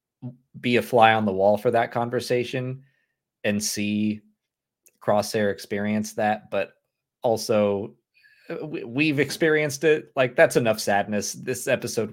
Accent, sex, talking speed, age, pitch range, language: American, male, 125 wpm, 30-49, 95-125 Hz, English